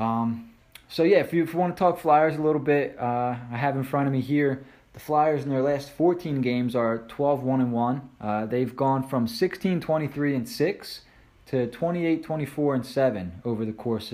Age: 20-39